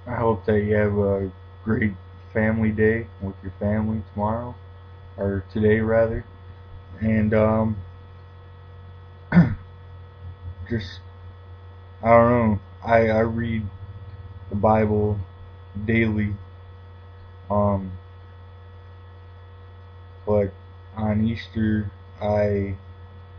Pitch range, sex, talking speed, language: 90-105 Hz, male, 85 wpm, English